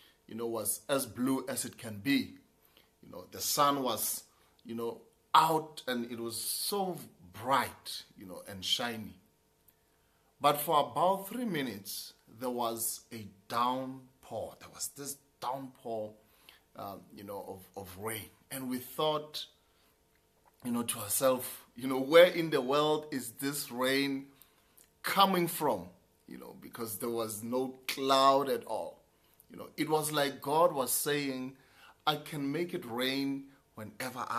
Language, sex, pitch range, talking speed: English, male, 120-155 Hz, 150 wpm